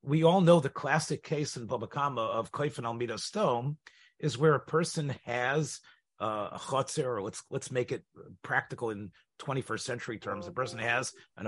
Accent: American